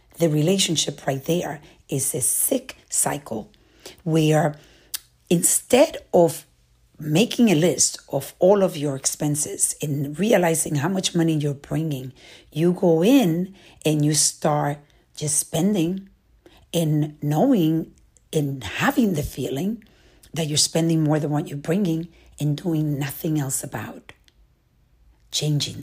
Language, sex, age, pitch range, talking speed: English, female, 50-69, 150-175 Hz, 125 wpm